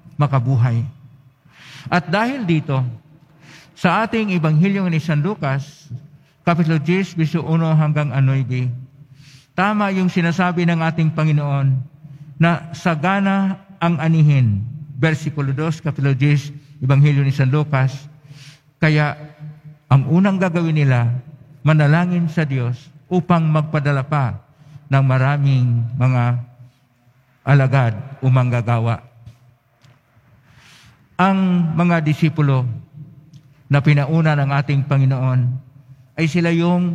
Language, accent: Filipino, native